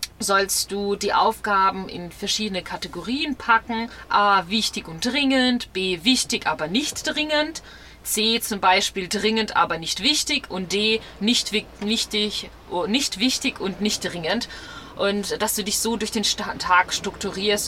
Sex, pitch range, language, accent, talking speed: female, 195-230 Hz, German, German, 140 wpm